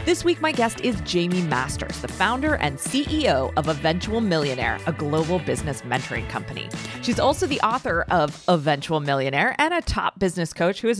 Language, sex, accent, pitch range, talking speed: English, female, American, 160-255 Hz, 180 wpm